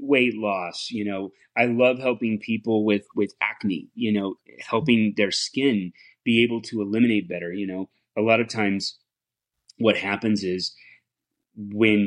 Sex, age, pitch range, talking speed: male, 30-49, 95-110 Hz, 155 wpm